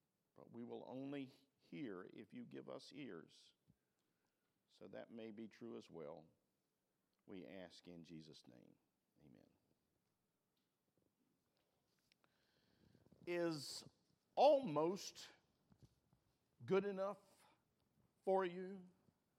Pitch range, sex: 120-165 Hz, male